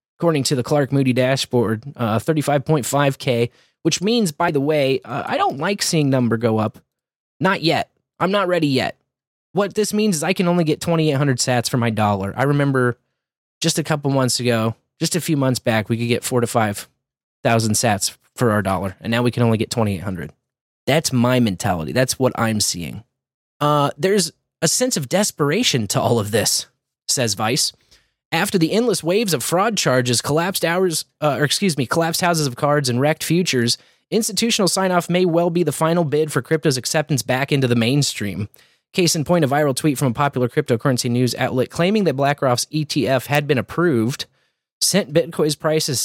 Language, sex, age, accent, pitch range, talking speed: English, male, 20-39, American, 120-165 Hz, 190 wpm